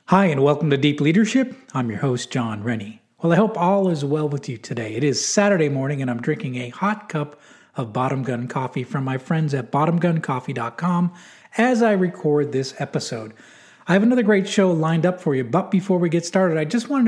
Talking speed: 215 wpm